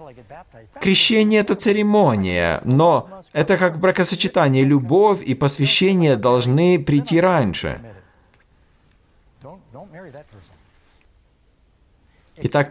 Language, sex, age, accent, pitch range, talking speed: Russian, male, 50-69, native, 100-145 Hz, 70 wpm